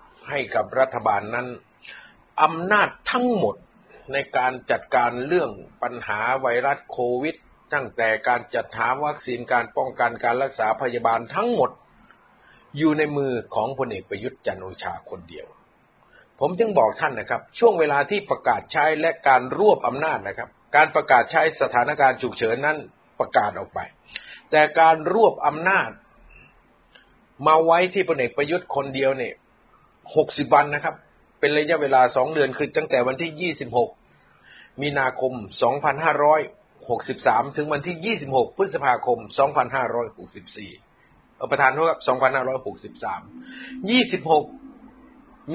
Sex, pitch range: male, 125-165 Hz